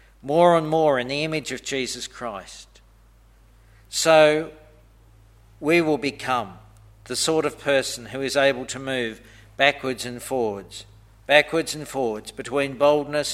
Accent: Australian